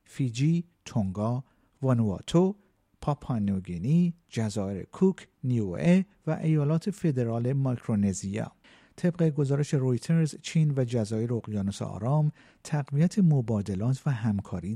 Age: 50-69